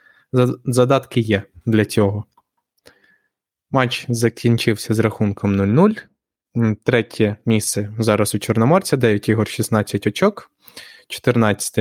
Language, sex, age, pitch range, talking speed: Ukrainian, male, 20-39, 110-125 Hz, 95 wpm